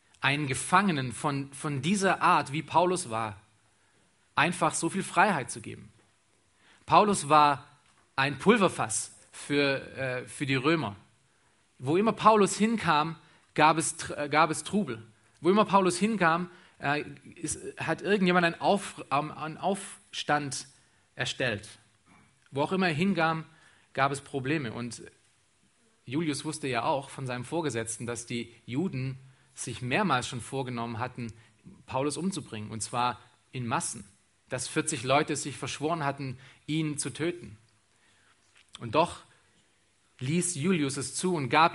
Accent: German